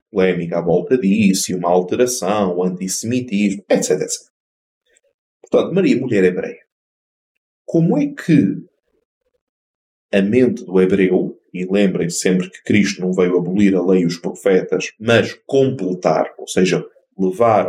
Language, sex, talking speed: Portuguese, male, 135 wpm